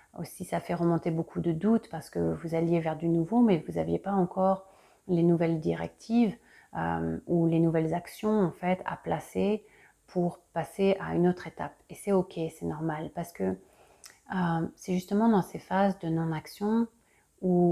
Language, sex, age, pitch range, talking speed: French, female, 30-49, 165-195 Hz, 180 wpm